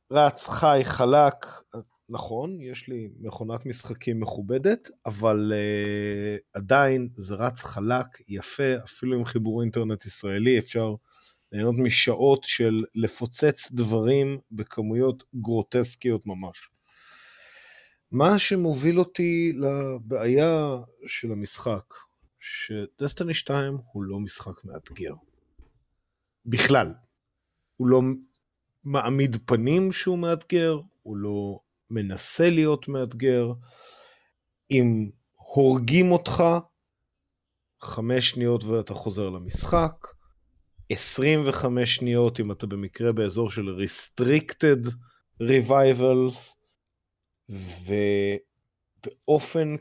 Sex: male